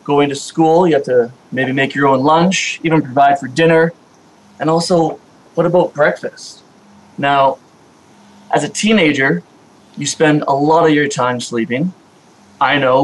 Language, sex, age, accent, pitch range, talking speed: English, male, 20-39, American, 135-160 Hz, 155 wpm